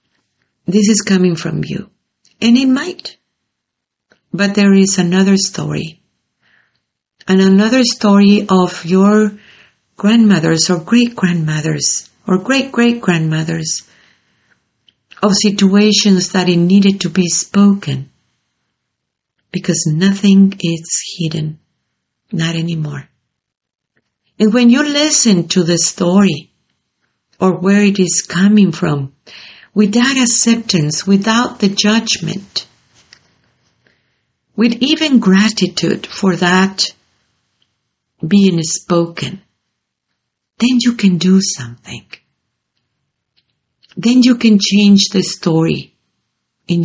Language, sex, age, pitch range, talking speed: English, female, 50-69, 170-210 Hz, 95 wpm